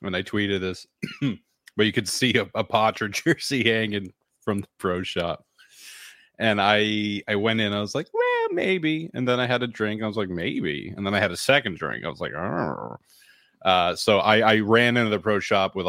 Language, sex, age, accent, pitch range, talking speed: English, male, 30-49, American, 90-120 Hz, 220 wpm